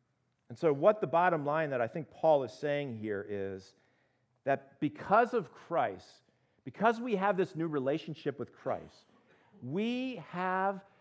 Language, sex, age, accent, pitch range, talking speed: English, male, 50-69, American, 145-215 Hz, 155 wpm